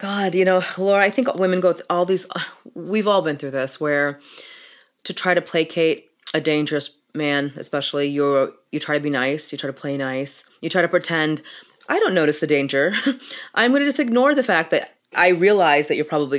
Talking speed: 210 wpm